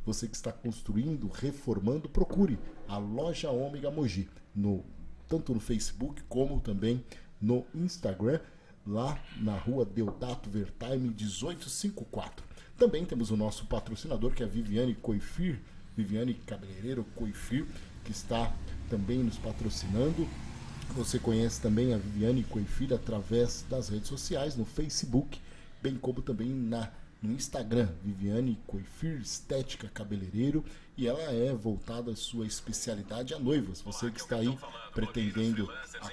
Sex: male